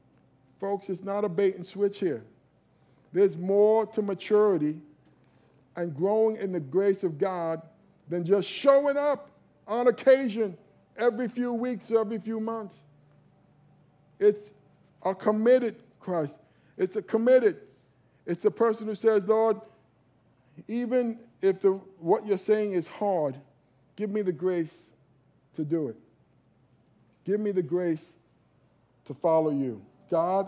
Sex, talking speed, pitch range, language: male, 135 wpm, 145-200 Hz, English